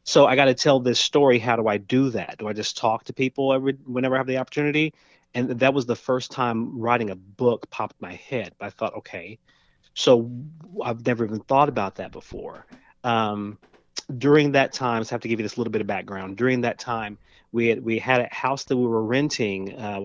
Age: 30-49